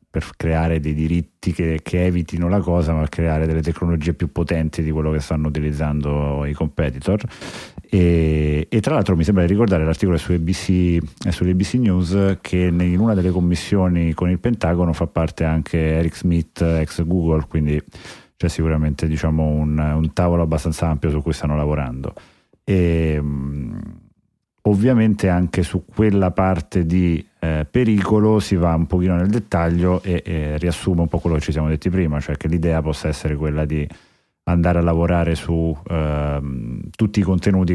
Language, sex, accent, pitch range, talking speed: Italian, male, native, 75-90 Hz, 165 wpm